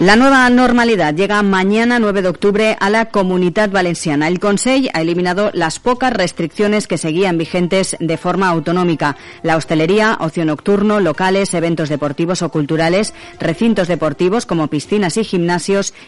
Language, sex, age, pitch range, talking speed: Spanish, female, 40-59, 165-205 Hz, 150 wpm